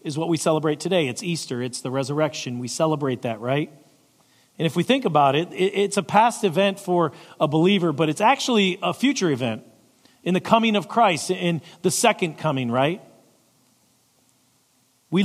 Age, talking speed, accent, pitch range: 40-59, 175 wpm, American, 135-180 Hz